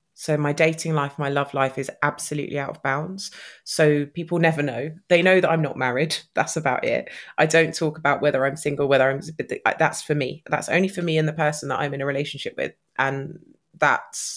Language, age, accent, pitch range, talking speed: English, 20-39, British, 145-165 Hz, 215 wpm